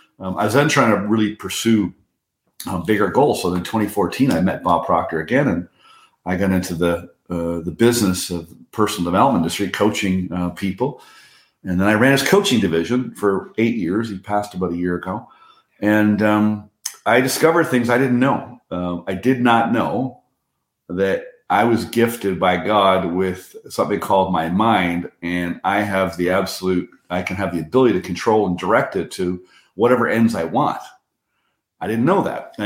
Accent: American